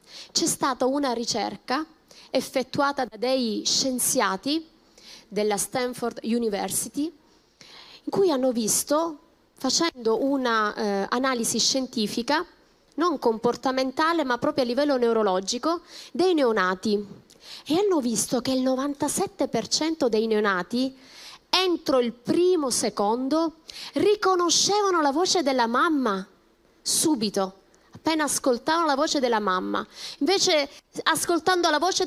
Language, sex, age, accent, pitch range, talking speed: Italian, female, 20-39, native, 235-315 Hz, 105 wpm